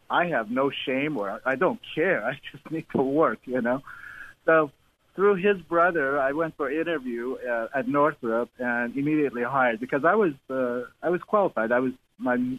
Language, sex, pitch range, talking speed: English, male, 120-155 Hz, 185 wpm